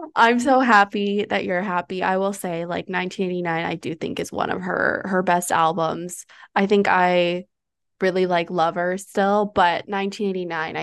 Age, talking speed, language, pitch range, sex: 20-39, 165 wpm, English, 180-205 Hz, female